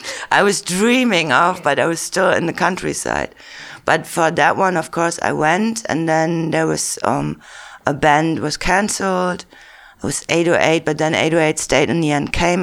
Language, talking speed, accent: English, 185 wpm, German